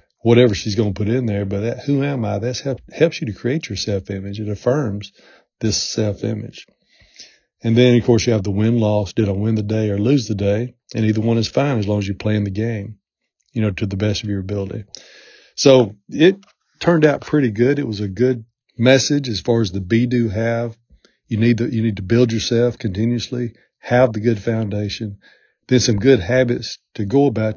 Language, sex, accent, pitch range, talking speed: English, male, American, 105-120 Hz, 220 wpm